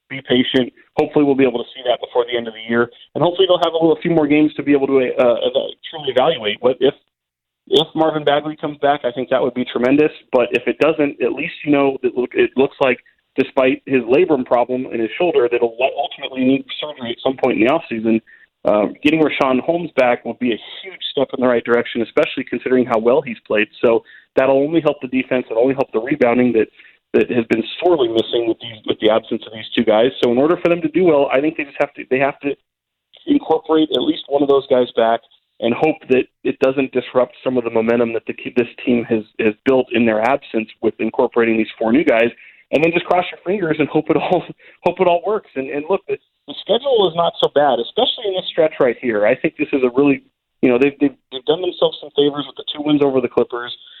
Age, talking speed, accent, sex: 30-49, 250 wpm, American, male